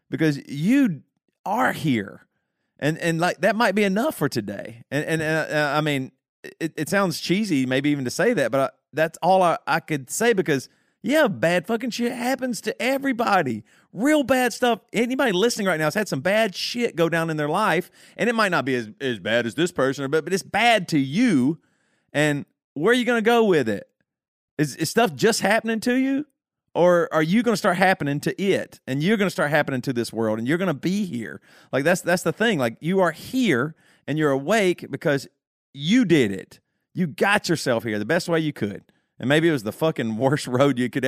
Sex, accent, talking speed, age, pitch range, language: male, American, 220 wpm, 40-59, 135-200 Hz, English